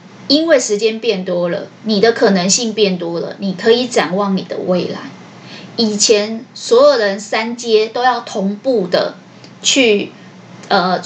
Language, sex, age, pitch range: Chinese, female, 20-39, 190-230 Hz